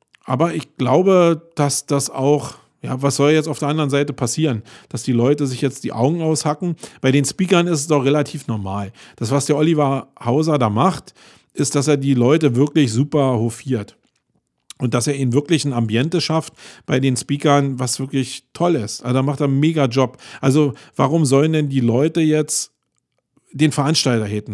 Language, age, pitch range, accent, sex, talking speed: German, 40-59, 125-155 Hz, German, male, 190 wpm